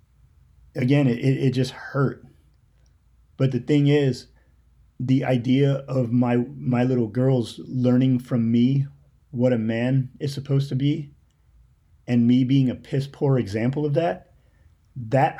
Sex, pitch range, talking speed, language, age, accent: male, 110-130 Hz, 140 wpm, English, 30-49, American